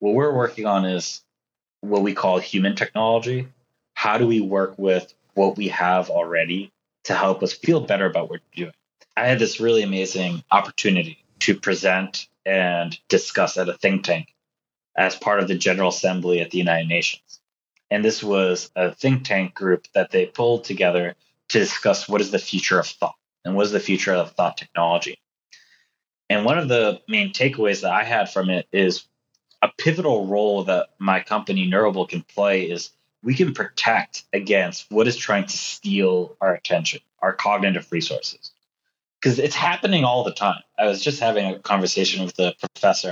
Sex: male